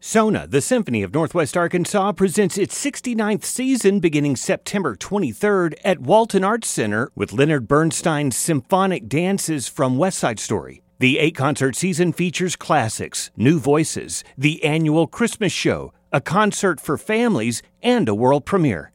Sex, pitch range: male, 140-195 Hz